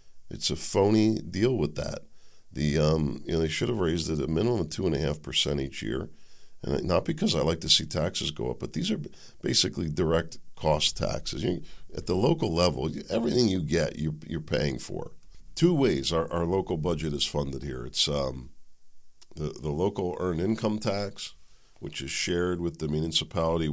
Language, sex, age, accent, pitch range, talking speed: English, male, 50-69, American, 70-90 Hz, 185 wpm